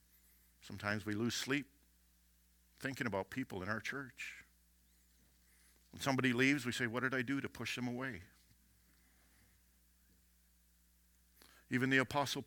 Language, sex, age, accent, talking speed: English, male, 50-69, American, 125 wpm